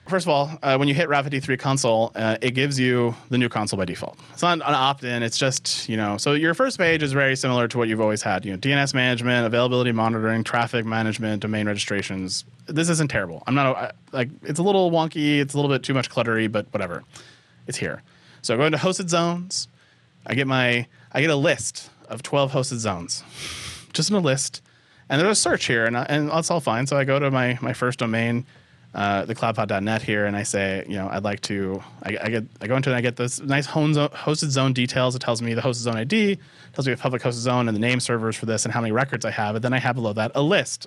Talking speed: 255 wpm